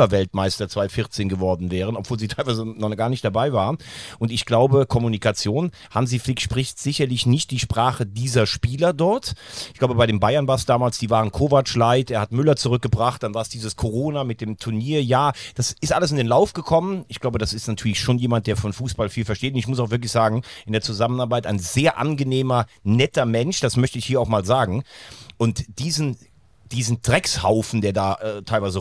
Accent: German